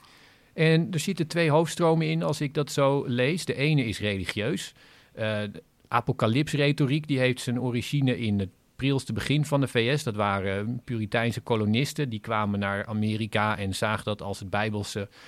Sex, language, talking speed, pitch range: male, Dutch, 165 wpm, 110-140 Hz